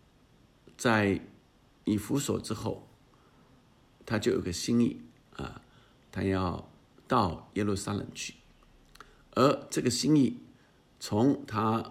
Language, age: Chinese, 50-69